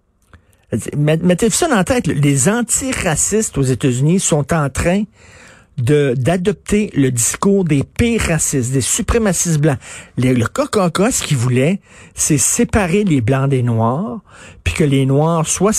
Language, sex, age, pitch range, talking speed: French, male, 50-69, 130-170 Hz, 150 wpm